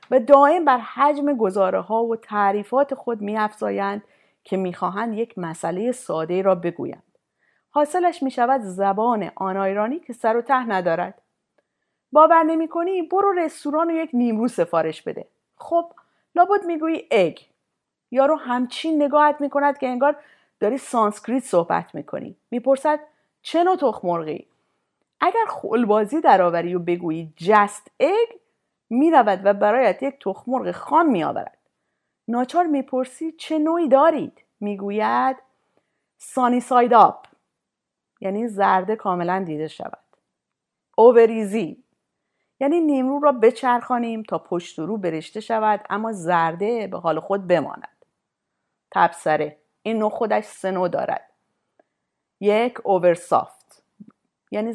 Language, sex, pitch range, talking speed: Persian, female, 195-285 Hz, 120 wpm